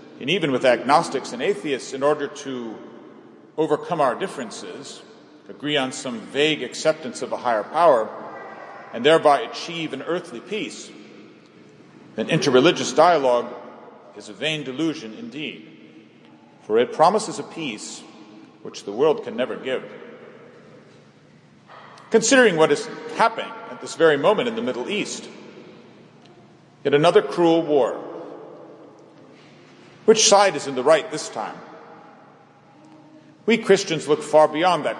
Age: 40-59